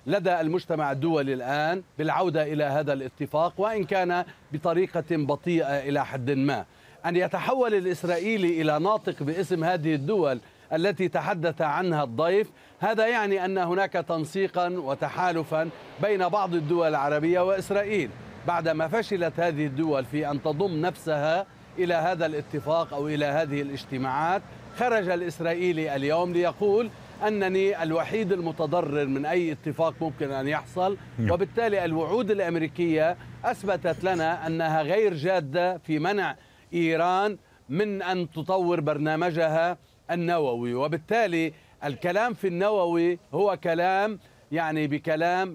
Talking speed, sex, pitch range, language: 120 wpm, male, 150-185 Hz, Arabic